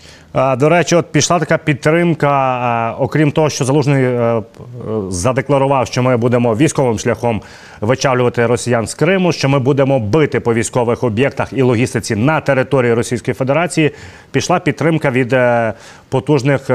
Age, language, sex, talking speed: 30-49, Ukrainian, male, 135 wpm